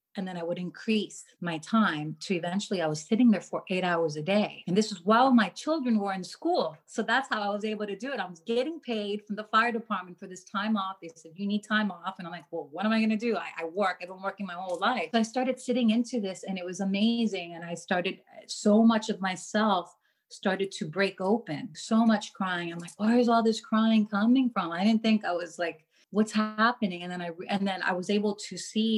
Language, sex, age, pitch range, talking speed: English, female, 30-49, 180-220 Hz, 255 wpm